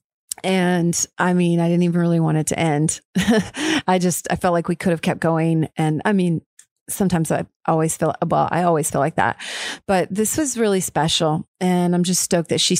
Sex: female